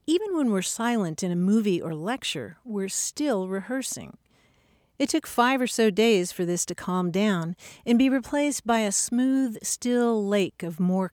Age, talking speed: 50-69, 180 wpm